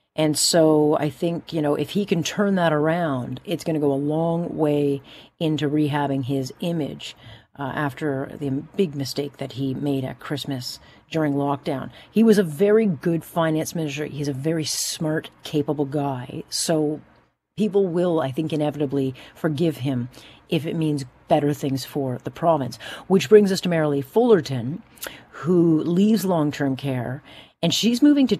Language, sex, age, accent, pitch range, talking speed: English, female, 40-59, American, 140-170 Hz, 165 wpm